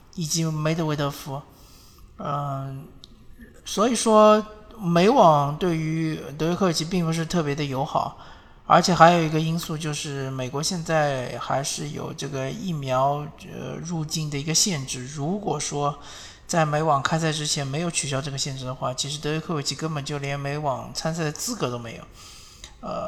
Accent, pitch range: native, 140-165 Hz